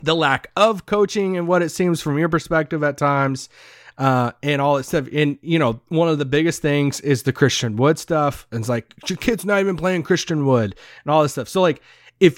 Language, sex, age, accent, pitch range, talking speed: English, male, 30-49, American, 140-200 Hz, 235 wpm